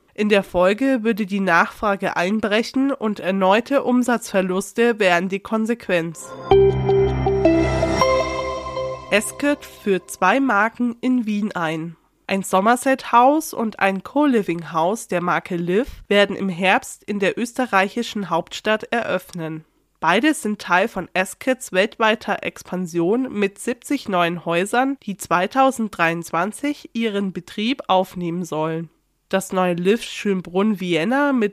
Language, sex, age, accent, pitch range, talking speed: German, female, 20-39, German, 180-235 Hz, 110 wpm